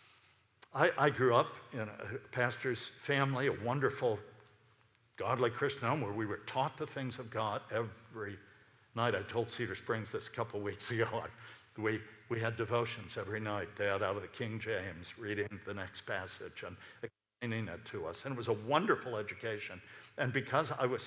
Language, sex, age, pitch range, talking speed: English, male, 60-79, 110-125 Hz, 180 wpm